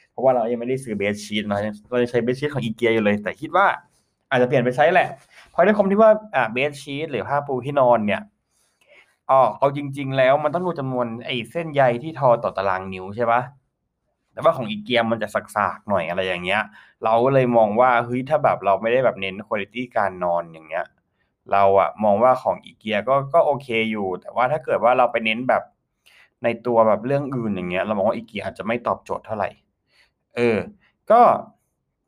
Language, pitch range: Thai, 115-155 Hz